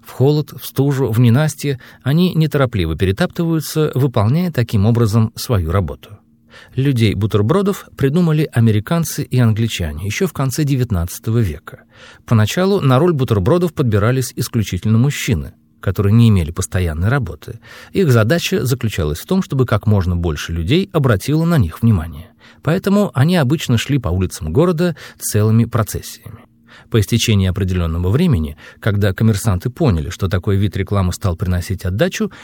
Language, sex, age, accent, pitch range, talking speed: Russian, male, 40-59, native, 100-145 Hz, 135 wpm